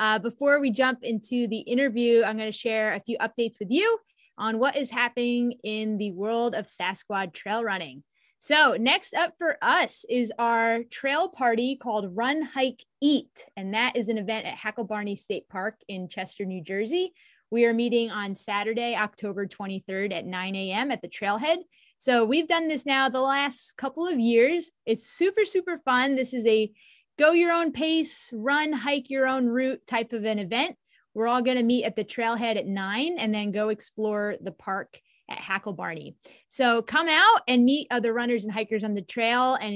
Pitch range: 210-265 Hz